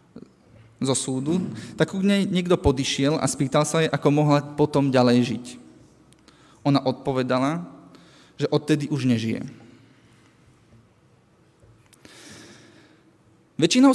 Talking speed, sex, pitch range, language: 100 wpm, male, 120-150 Hz, Slovak